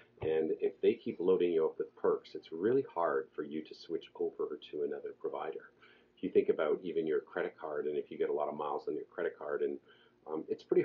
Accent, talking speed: American, 245 wpm